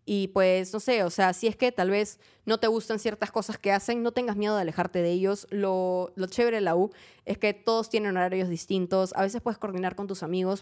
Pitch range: 180-245 Hz